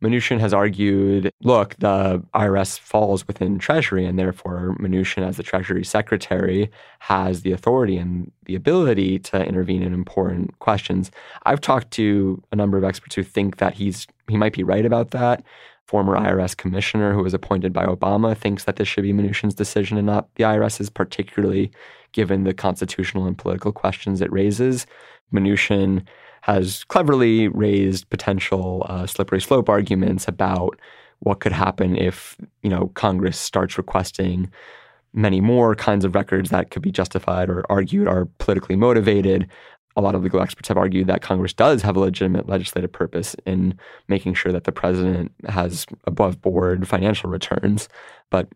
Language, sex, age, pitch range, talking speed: English, male, 20-39, 95-105 Hz, 165 wpm